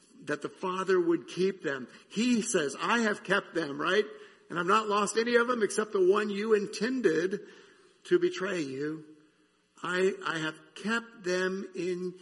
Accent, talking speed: American, 165 wpm